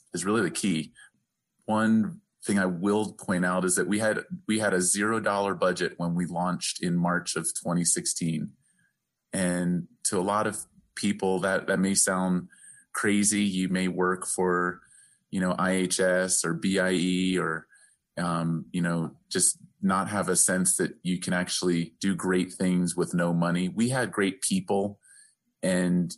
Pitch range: 90-100 Hz